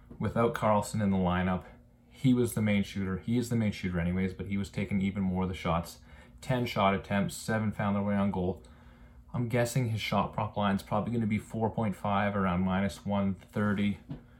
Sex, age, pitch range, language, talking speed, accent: male, 30-49, 95-110 Hz, English, 205 wpm, American